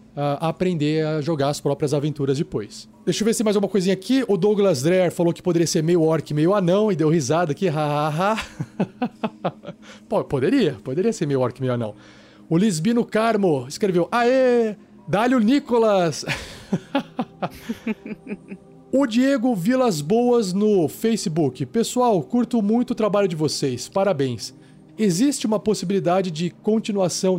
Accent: Brazilian